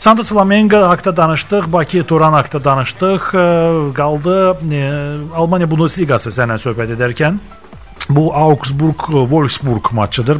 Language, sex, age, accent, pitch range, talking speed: Russian, male, 40-59, Turkish, 115-155 Hz, 85 wpm